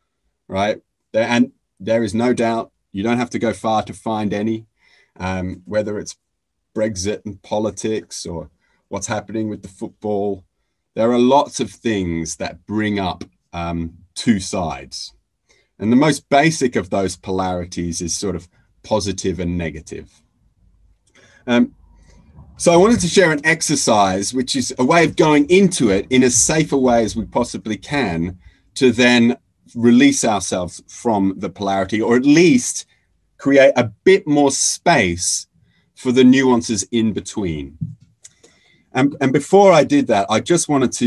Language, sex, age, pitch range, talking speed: English, male, 30-49, 95-125 Hz, 155 wpm